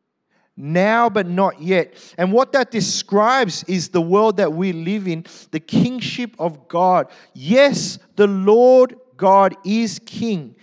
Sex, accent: male, Australian